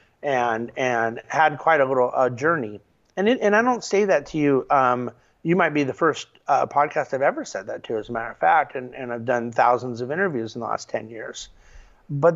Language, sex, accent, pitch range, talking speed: English, male, American, 125-165 Hz, 235 wpm